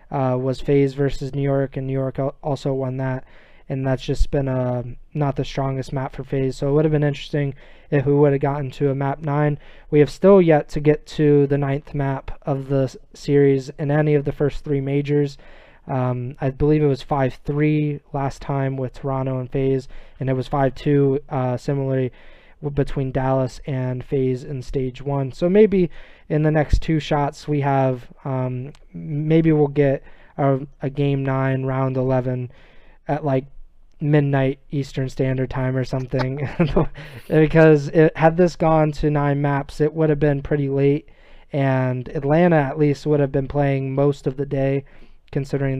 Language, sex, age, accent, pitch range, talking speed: English, male, 20-39, American, 135-150 Hz, 180 wpm